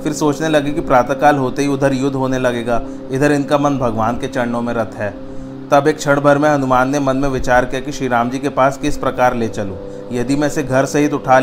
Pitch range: 125-140 Hz